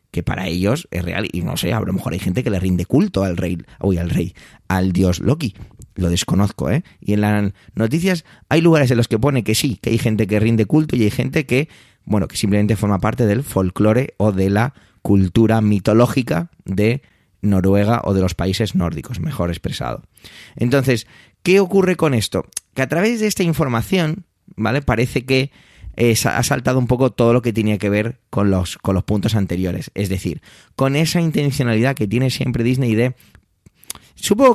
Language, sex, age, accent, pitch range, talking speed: Spanish, male, 30-49, Spanish, 100-130 Hz, 195 wpm